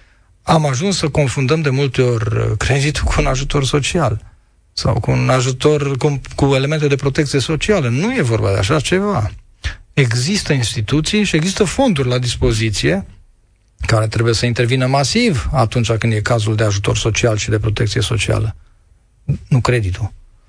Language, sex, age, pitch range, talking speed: Romanian, male, 40-59, 110-140 Hz, 155 wpm